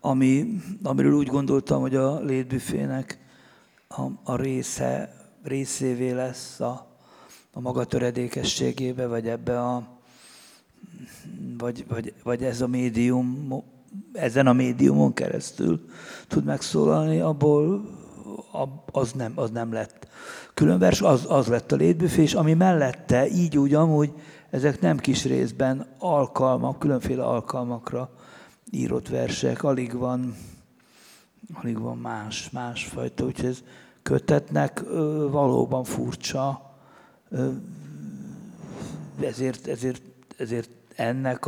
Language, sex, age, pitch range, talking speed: Hungarian, male, 60-79, 120-140 Hz, 105 wpm